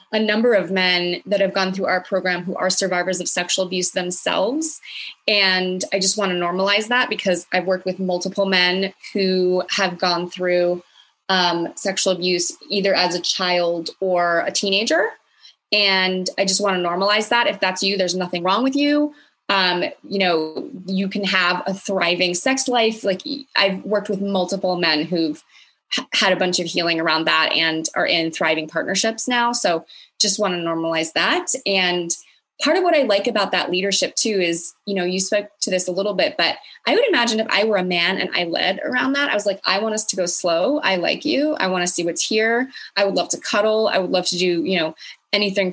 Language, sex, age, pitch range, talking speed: English, female, 20-39, 180-210 Hz, 210 wpm